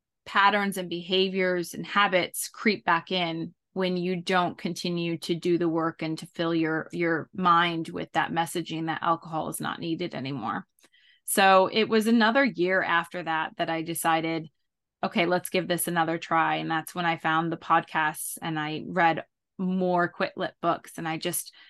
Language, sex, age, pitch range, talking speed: English, female, 20-39, 165-190 Hz, 175 wpm